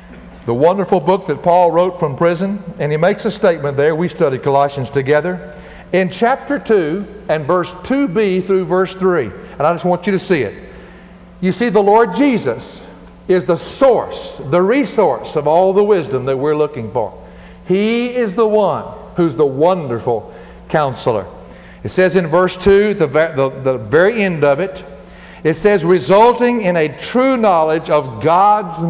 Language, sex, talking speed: English, male, 170 wpm